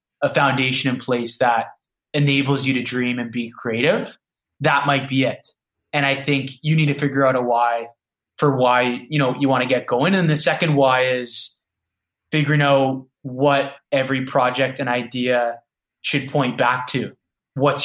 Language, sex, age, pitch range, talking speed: English, male, 20-39, 120-140 Hz, 175 wpm